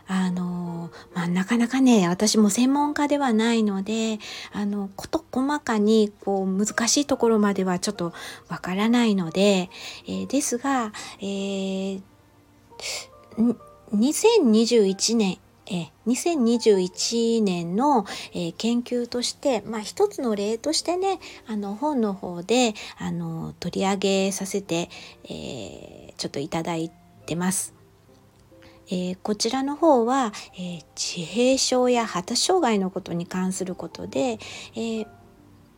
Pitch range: 180-240 Hz